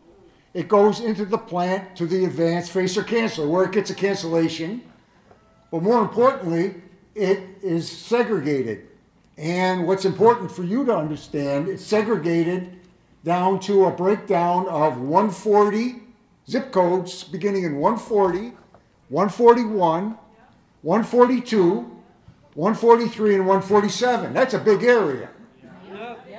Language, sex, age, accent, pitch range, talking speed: English, male, 60-79, American, 175-210 Hz, 115 wpm